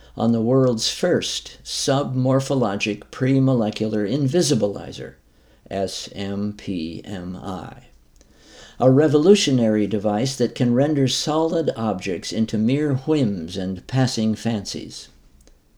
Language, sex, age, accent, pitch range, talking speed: English, male, 60-79, American, 105-130 Hz, 85 wpm